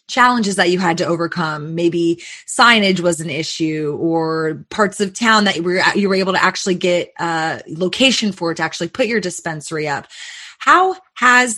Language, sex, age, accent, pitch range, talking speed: English, female, 20-39, American, 175-215 Hz, 185 wpm